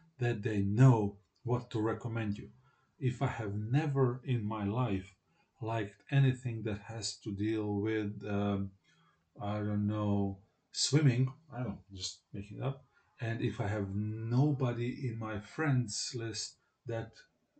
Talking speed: 145 wpm